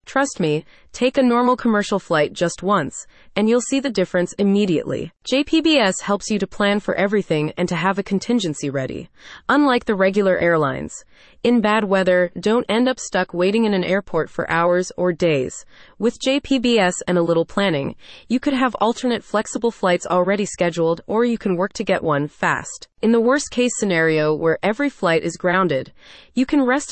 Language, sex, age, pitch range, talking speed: English, female, 30-49, 175-235 Hz, 185 wpm